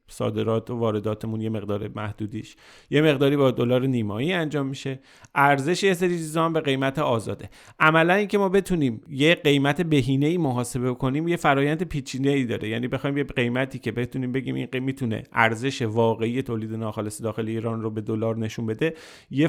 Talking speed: 160 wpm